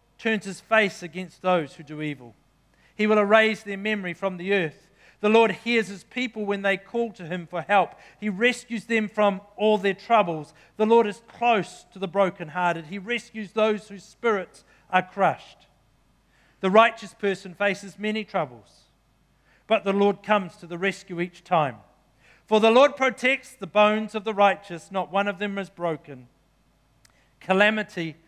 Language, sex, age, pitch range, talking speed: English, male, 40-59, 170-220 Hz, 170 wpm